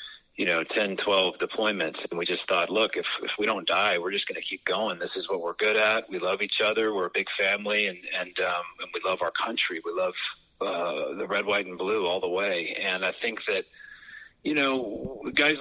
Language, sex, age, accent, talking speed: English, male, 40-59, American, 235 wpm